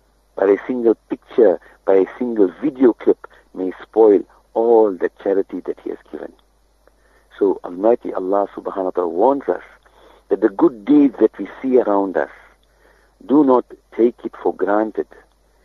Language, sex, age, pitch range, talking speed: English, male, 50-69, 100-165 Hz, 155 wpm